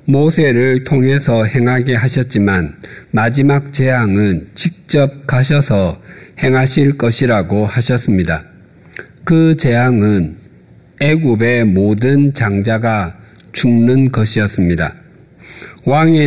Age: 50-69